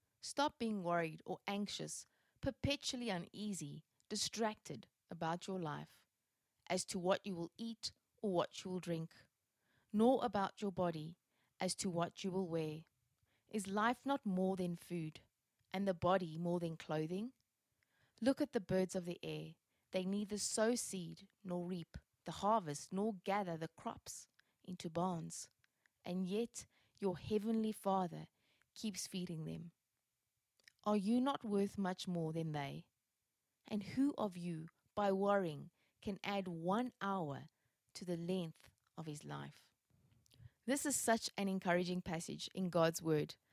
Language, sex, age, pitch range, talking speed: English, female, 20-39, 160-205 Hz, 145 wpm